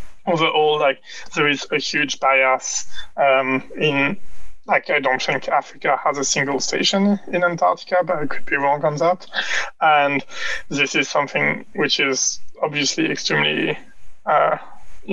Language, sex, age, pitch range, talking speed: English, male, 20-39, 145-165 Hz, 145 wpm